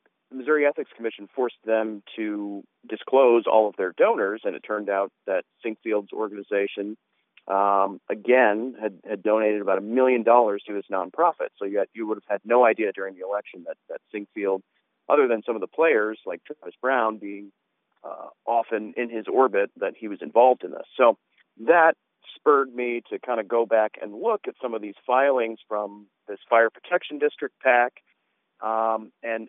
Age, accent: 40-59, American